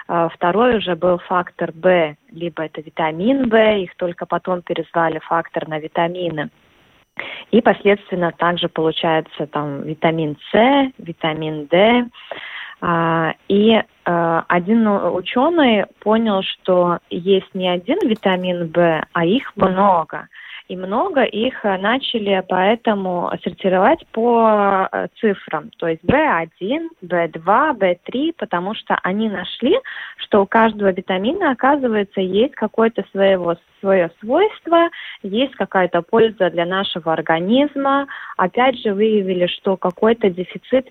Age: 20-39